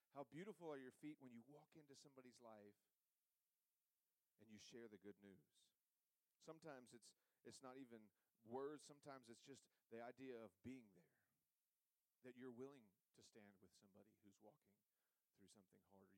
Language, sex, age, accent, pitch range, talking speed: English, male, 40-59, American, 105-135 Hz, 160 wpm